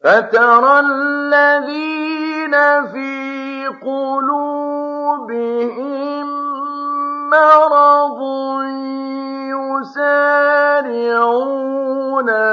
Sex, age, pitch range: male, 50-69, 220-285 Hz